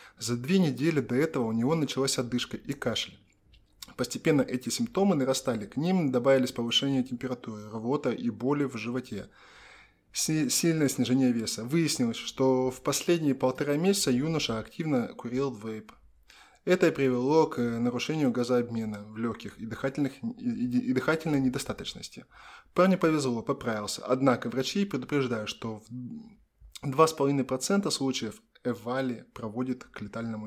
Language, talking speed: Russian, 125 wpm